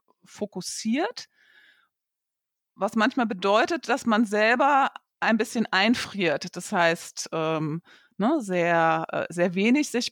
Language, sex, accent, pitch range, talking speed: German, female, German, 190-235 Hz, 105 wpm